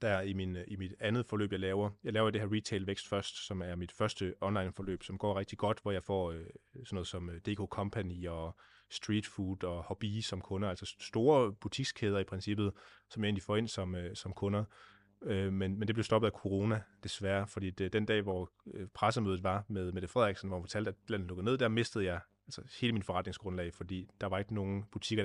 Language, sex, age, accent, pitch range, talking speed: Danish, male, 30-49, native, 95-110 Hz, 220 wpm